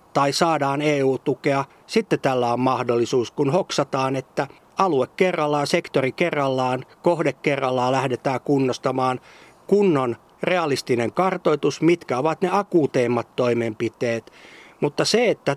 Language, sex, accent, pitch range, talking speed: Finnish, male, native, 130-165 Hz, 110 wpm